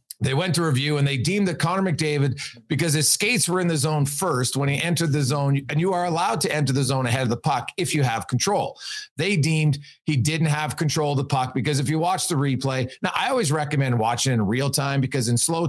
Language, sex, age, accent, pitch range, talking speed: English, male, 40-59, American, 135-170 Hz, 250 wpm